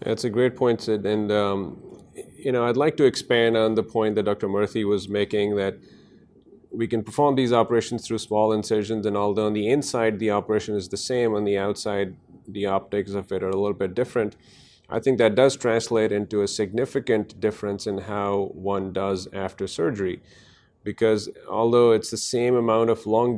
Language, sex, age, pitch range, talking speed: English, male, 30-49, 100-115 Hz, 195 wpm